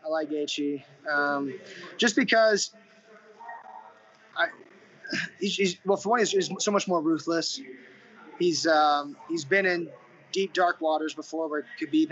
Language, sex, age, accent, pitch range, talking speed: English, male, 20-39, American, 150-195 Hz, 140 wpm